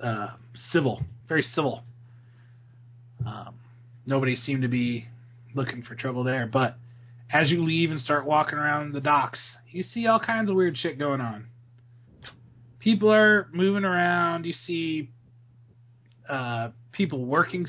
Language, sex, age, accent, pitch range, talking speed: English, male, 30-49, American, 120-150 Hz, 140 wpm